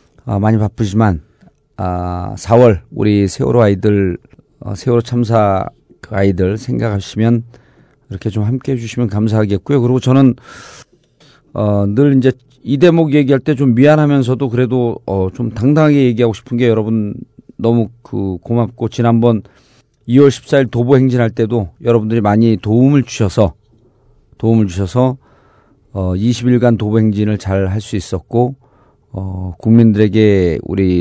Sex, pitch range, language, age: male, 100-125 Hz, Korean, 40-59